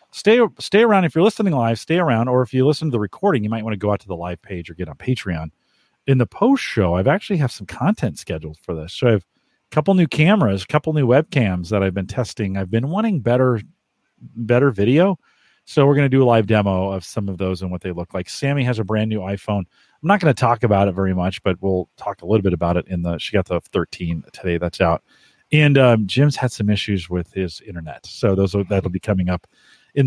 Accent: American